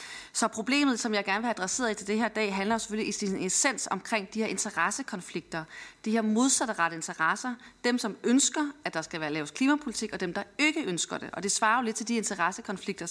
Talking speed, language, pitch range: 230 wpm, Danish, 185-225 Hz